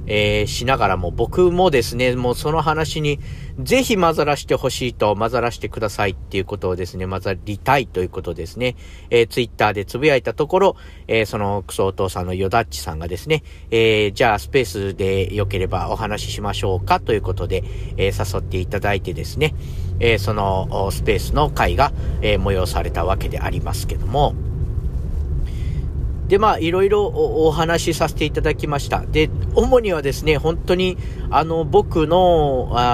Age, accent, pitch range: 50-69, native, 95-130 Hz